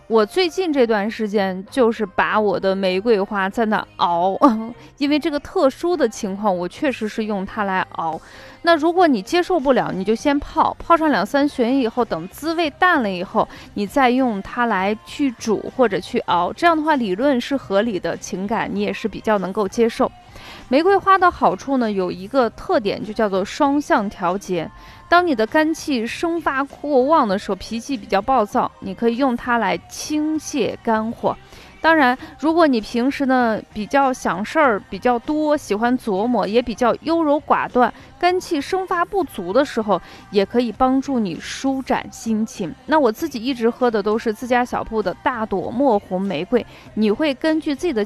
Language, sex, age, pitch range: Chinese, female, 20-39, 205-285 Hz